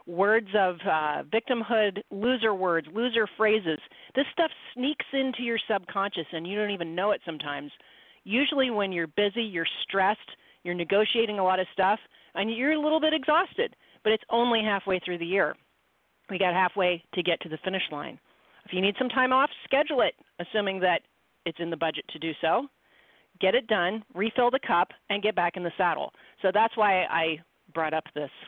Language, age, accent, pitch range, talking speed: English, 40-59, American, 170-225 Hz, 190 wpm